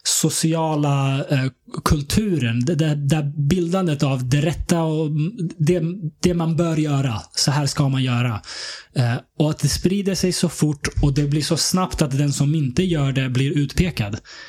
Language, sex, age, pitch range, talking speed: Swedish, male, 20-39, 125-165 Hz, 165 wpm